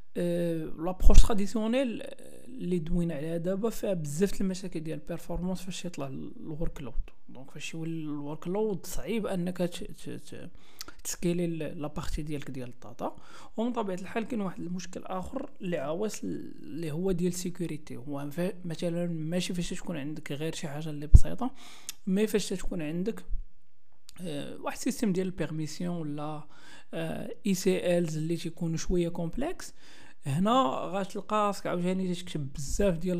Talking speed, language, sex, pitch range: 140 wpm, Arabic, male, 160-195 Hz